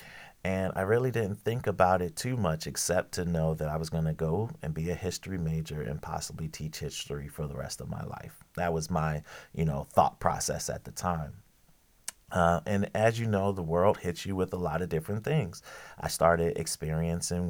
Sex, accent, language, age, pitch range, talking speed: male, American, English, 30-49, 80-95 Hz, 205 wpm